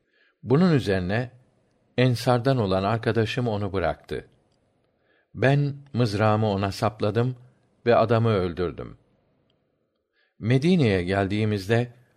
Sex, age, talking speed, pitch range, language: male, 60-79, 80 wpm, 95-125 Hz, Turkish